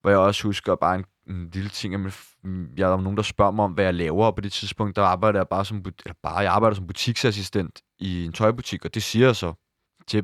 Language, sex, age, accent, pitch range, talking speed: Danish, male, 20-39, native, 95-110 Hz, 260 wpm